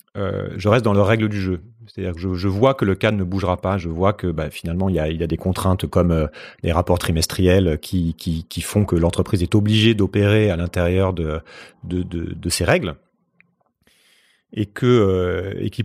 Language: French